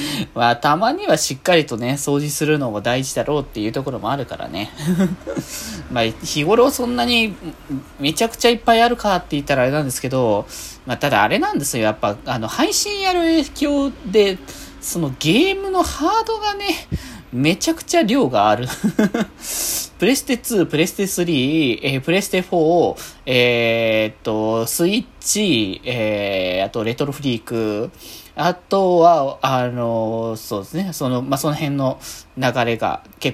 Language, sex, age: Japanese, male, 20-39